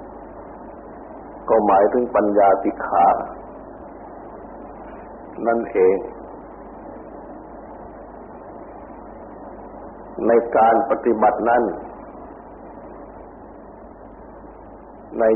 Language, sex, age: Thai, male, 60-79